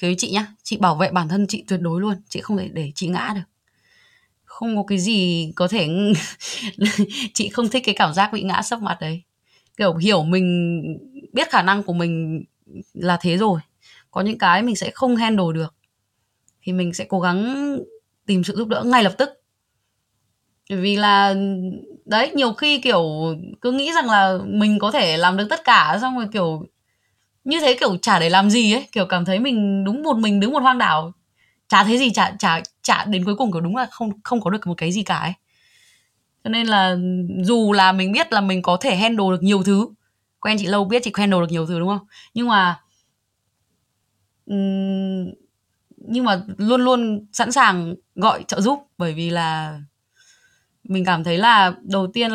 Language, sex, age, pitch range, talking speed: Vietnamese, female, 20-39, 175-225 Hz, 195 wpm